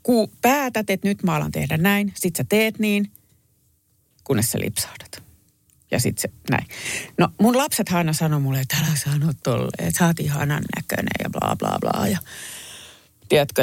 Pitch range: 140-190 Hz